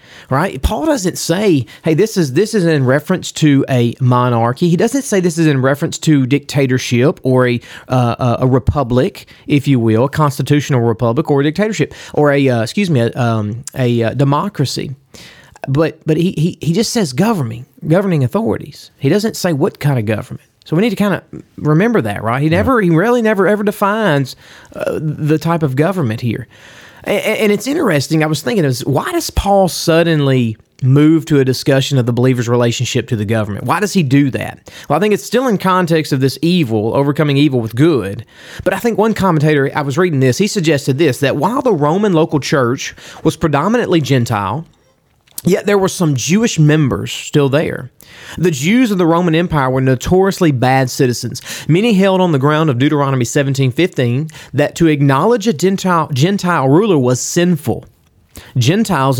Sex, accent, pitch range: male, American, 130-175 Hz